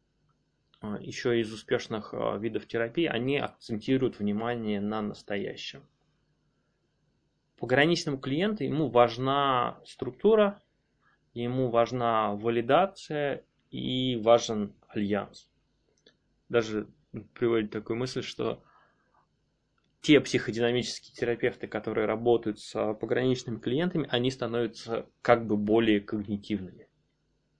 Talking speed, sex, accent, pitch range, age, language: 85 wpm, male, native, 115-140 Hz, 20-39, Russian